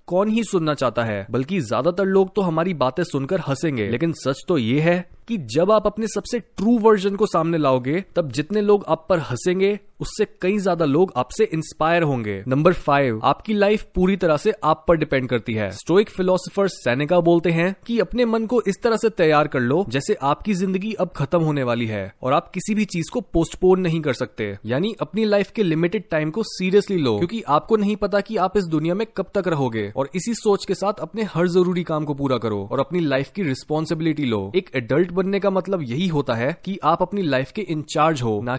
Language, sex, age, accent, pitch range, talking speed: Hindi, male, 20-39, native, 145-195 Hz, 220 wpm